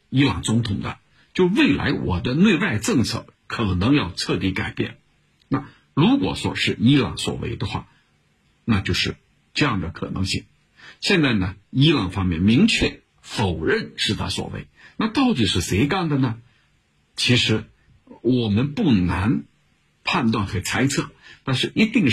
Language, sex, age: Chinese, male, 50-69